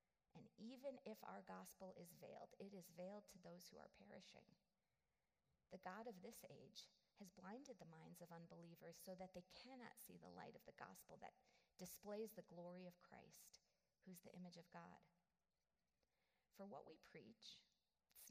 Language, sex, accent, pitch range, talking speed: English, female, American, 175-215 Hz, 170 wpm